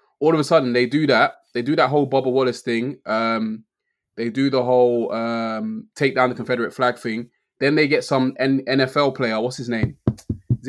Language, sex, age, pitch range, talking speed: English, male, 20-39, 125-155 Hz, 210 wpm